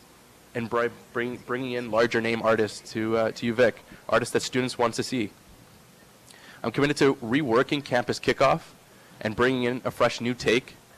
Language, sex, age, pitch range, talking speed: English, male, 20-39, 110-120 Hz, 170 wpm